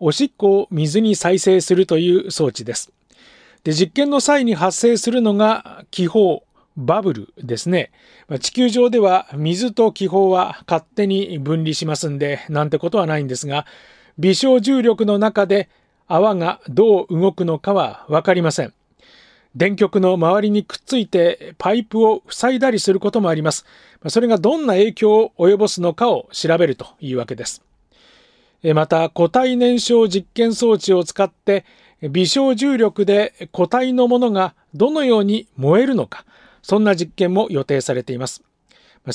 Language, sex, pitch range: Japanese, male, 165-215 Hz